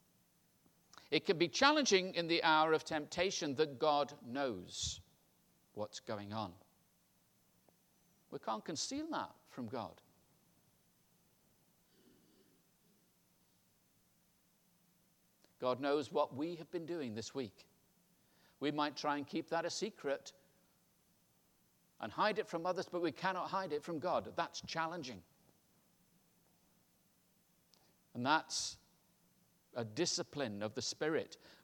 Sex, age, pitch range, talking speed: male, 60-79, 145-180 Hz, 110 wpm